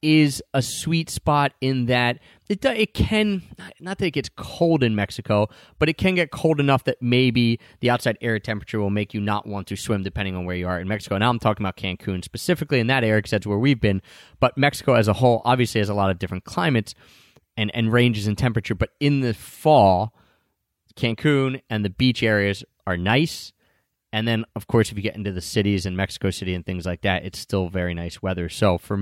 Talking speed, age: 225 wpm, 30-49